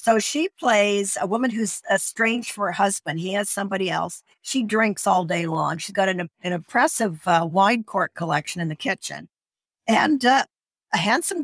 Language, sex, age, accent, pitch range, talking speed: English, female, 50-69, American, 175-225 Hz, 185 wpm